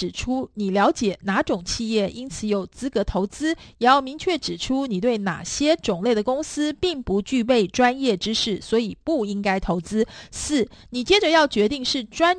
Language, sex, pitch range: Chinese, female, 215-300 Hz